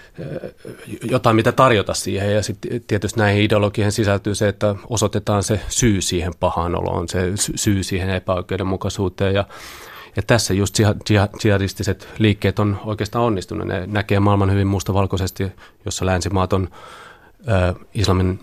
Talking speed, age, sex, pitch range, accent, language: 130 wpm, 30-49, male, 95-105 Hz, native, Finnish